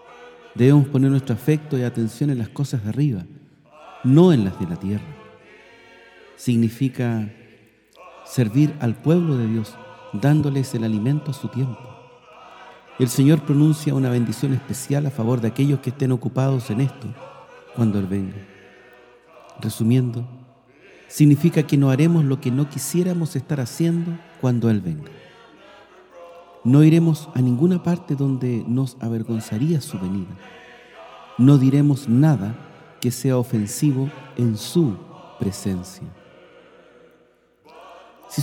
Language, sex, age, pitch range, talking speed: Spanish, male, 50-69, 115-150 Hz, 125 wpm